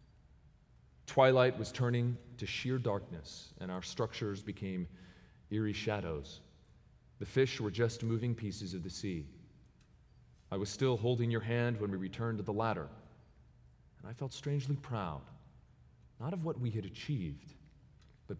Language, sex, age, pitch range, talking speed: English, male, 40-59, 95-125 Hz, 145 wpm